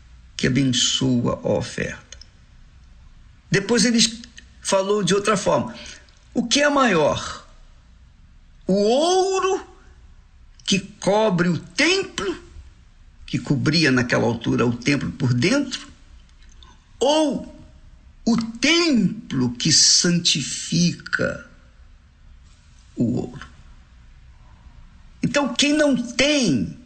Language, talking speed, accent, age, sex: Portuguese, 85 wpm, Brazilian, 50-69, male